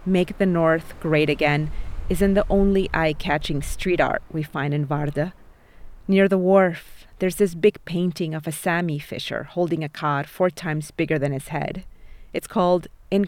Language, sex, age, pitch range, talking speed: English, female, 30-49, 155-195 Hz, 170 wpm